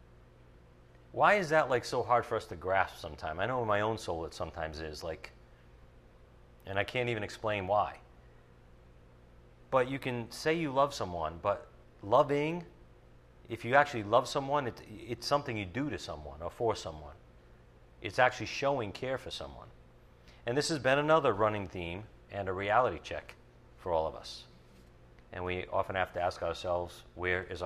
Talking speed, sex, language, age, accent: 175 wpm, male, English, 40-59, American